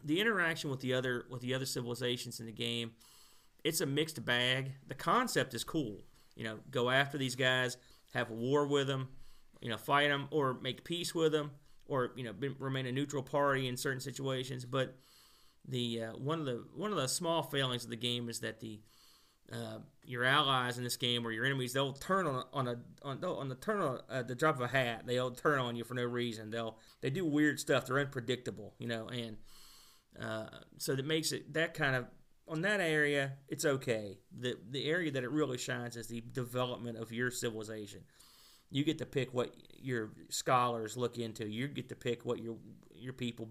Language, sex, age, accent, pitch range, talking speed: English, male, 40-59, American, 120-140 Hz, 210 wpm